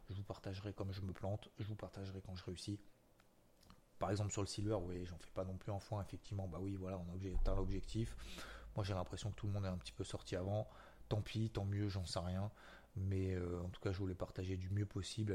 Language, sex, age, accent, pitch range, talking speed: French, male, 20-39, French, 95-105 Hz, 255 wpm